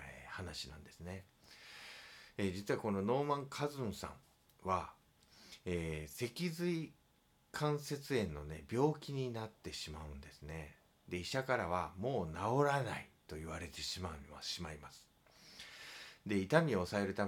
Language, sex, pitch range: Japanese, male, 85-145 Hz